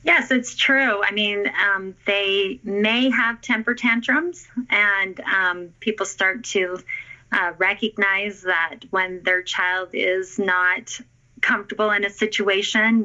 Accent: American